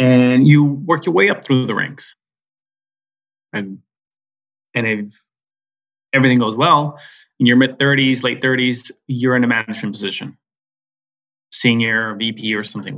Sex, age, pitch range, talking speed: male, 20-39, 125-155 Hz, 130 wpm